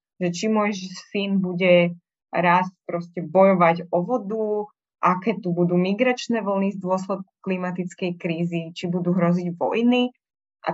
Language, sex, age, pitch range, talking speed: Slovak, female, 20-39, 175-200 Hz, 135 wpm